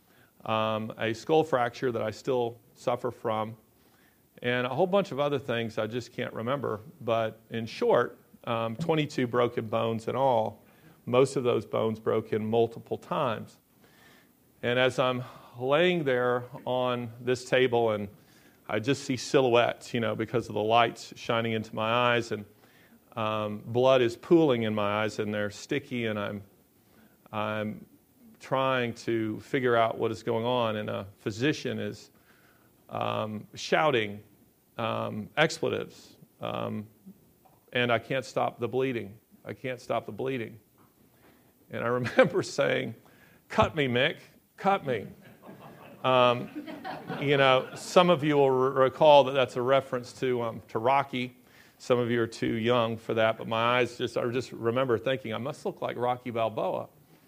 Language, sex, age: English, male, 40-59